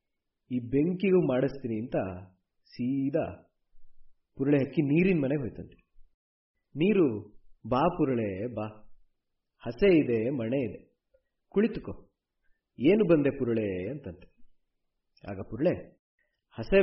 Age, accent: 30-49, native